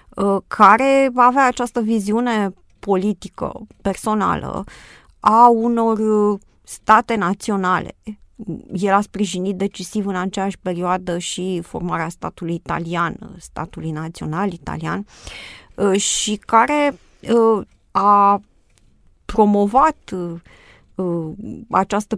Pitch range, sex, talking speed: 180-215 Hz, female, 80 wpm